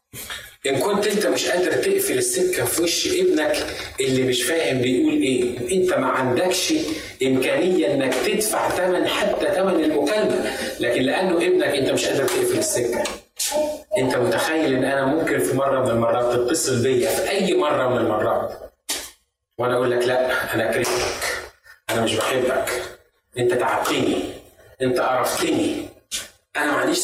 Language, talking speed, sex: Arabic, 145 wpm, male